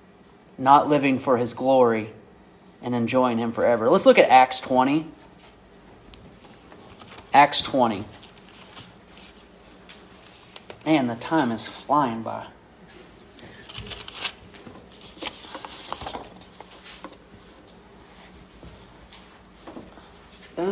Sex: male